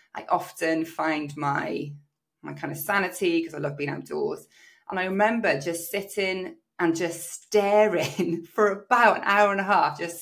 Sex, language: female, English